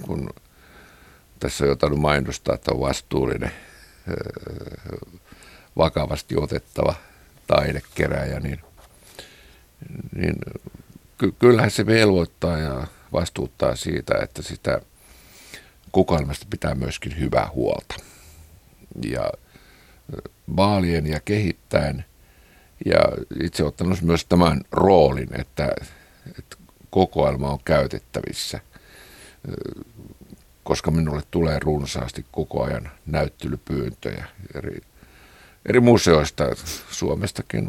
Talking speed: 80 wpm